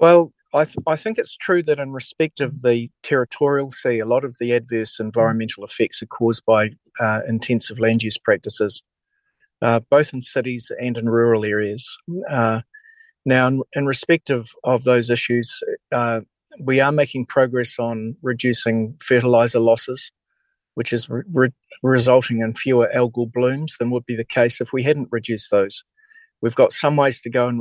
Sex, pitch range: male, 115-135 Hz